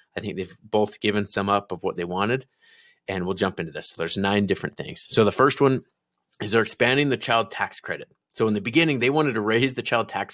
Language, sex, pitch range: English, male, 95-115 Hz